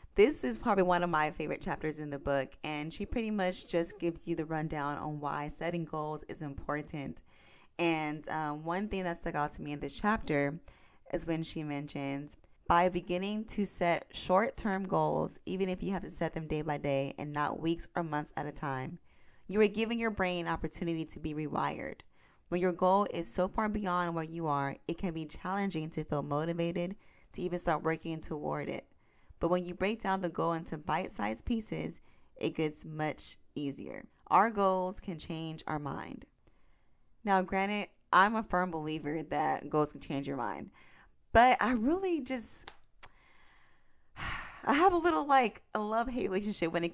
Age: 20-39